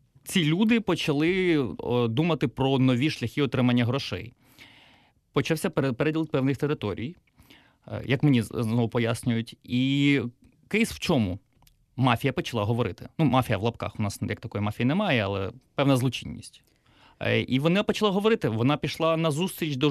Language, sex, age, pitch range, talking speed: Ukrainian, male, 30-49, 120-160 Hz, 140 wpm